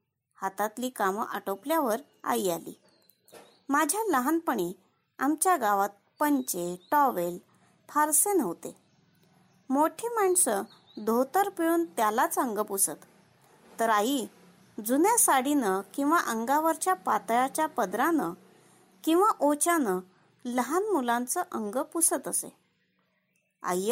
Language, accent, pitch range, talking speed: Marathi, native, 230-360 Hz, 90 wpm